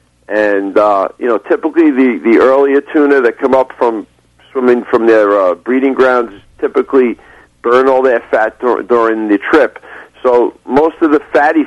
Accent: American